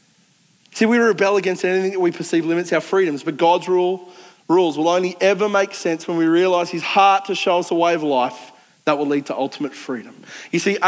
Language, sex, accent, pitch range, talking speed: English, male, Australian, 160-190 Hz, 215 wpm